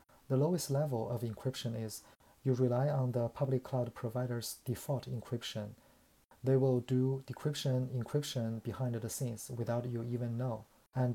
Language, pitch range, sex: Chinese, 115-130 Hz, male